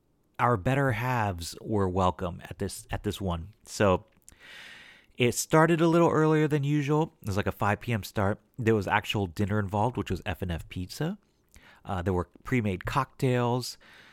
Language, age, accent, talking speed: English, 30-49, American, 165 wpm